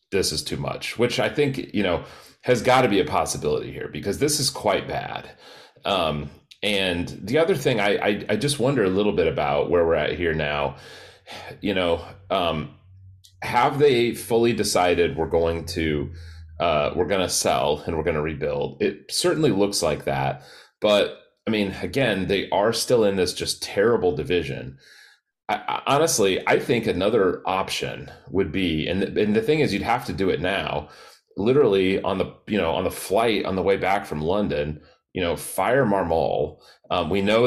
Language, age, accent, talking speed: English, 30-49, American, 190 wpm